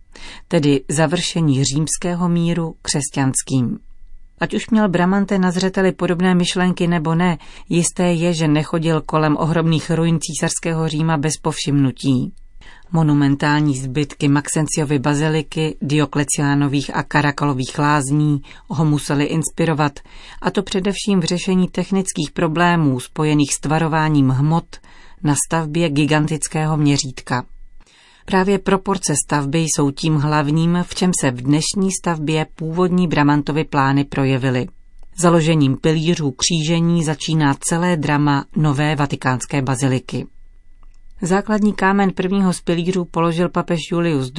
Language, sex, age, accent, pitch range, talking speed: Czech, female, 40-59, native, 145-175 Hz, 115 wpm